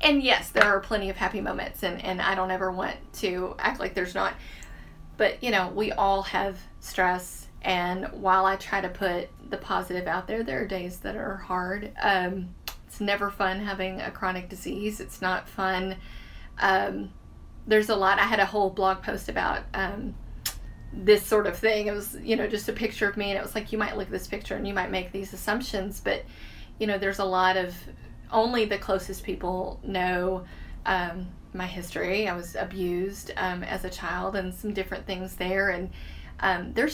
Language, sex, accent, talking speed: English, female, American, 200 wpm